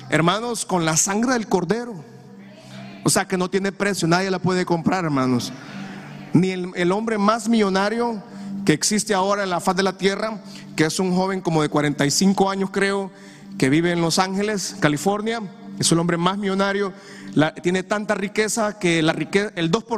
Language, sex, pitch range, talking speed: Spanish, male, 175-215 Hz, 175 wpm